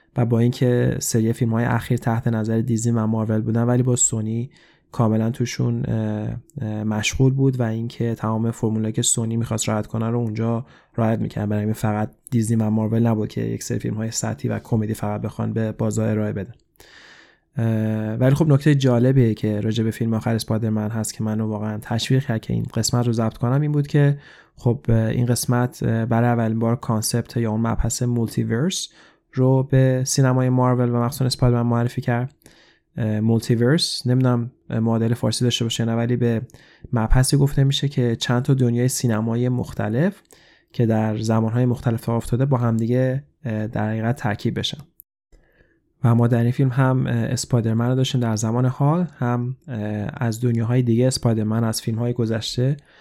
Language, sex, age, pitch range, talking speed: Persian, male, 20-39, 110-125 Hz, 160 wpm